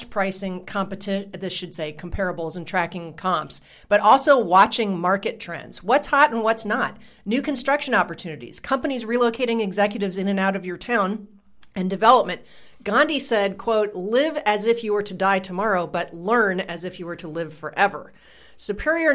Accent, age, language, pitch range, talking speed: American, 40-59, English, 180-235 Hz, 170 wpm